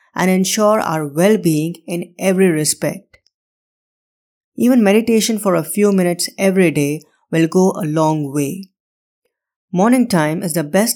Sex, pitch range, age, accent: female, 160-205 Hz, 20-39, Indian